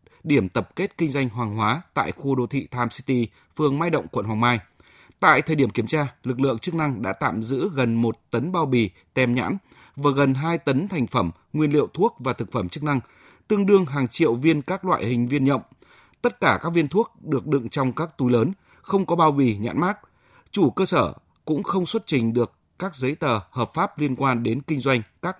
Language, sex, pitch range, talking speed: Vietnamese, male, 115-155 Hz, 230 wpm